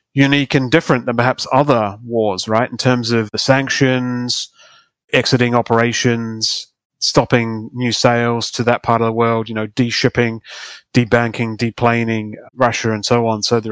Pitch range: 110-130 Hz